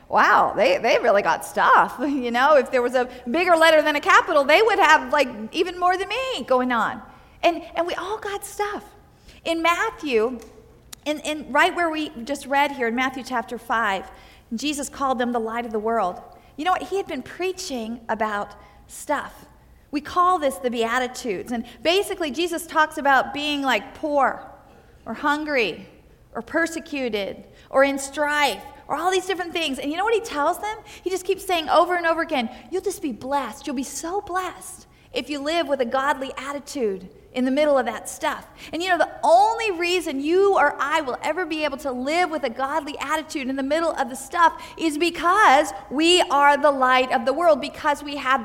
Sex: female